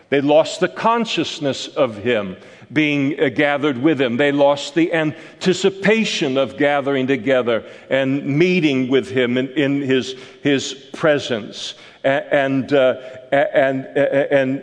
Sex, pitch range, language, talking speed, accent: male, 135-165 Hz, English, 130 wpm, American